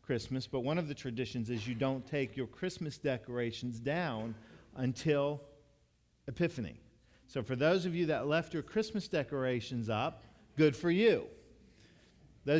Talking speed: 150 wpm